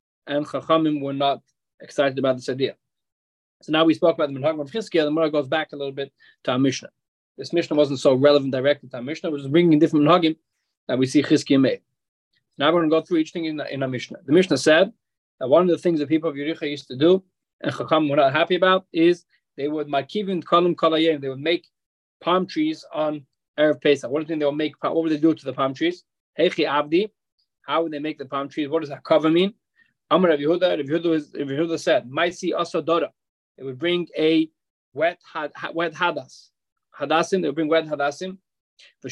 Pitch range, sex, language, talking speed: 145-170 Hz, male, English, 215 wpm